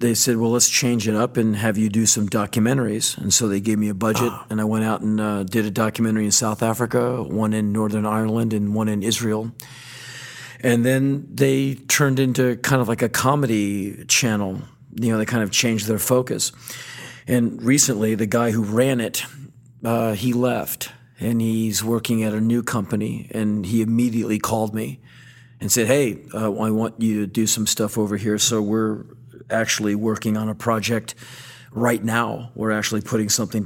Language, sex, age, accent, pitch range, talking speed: English, male, 40-59, American, 110-125 Hz, 190 wpm